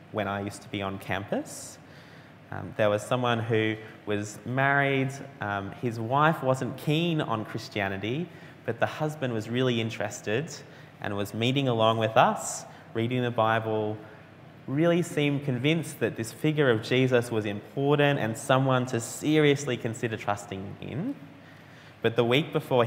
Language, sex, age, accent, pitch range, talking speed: English, male, 20-39, Australian, 105-140 Hz, 150 wpm